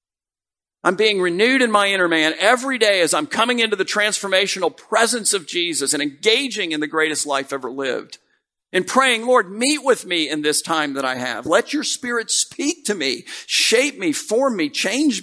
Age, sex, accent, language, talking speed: 50-69, male, American, English, 195 wpm